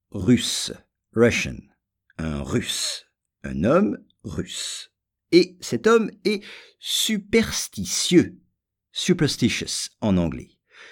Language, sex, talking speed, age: English, male, 80 wpm, 50-69